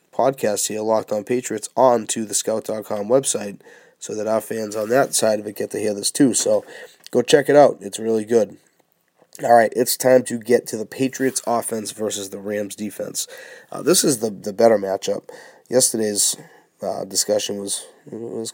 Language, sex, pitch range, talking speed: English, male, 110-125 Hz, 185 wpm